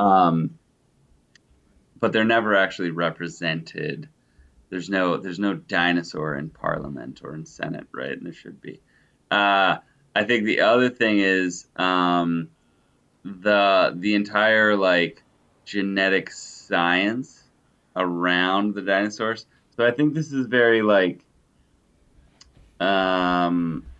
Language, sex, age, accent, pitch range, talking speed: English, male, 20-39, American, 85-100 Hz, 115 wpm